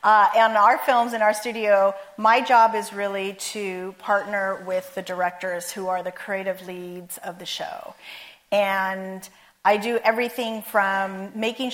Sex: female